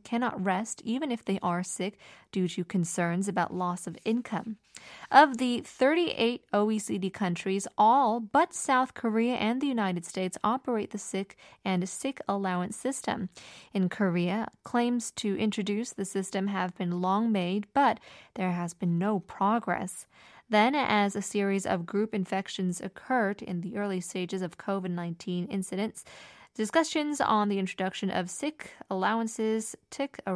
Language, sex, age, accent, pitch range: Korean, female, 20-39, American, 190-235 Hz